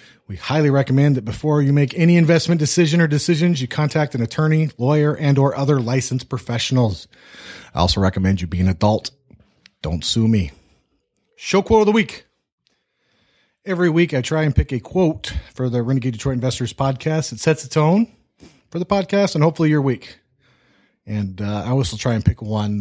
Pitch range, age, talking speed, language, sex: 115-165 Hz, 30-49, 185 wpm, English, male